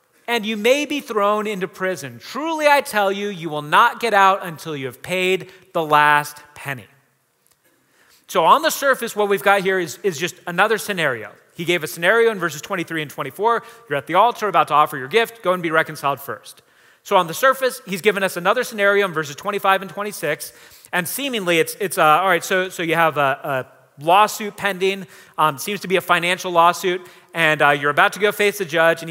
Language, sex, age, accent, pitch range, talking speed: English, male, 30-49, American, 170-220 Hz, 215 wpm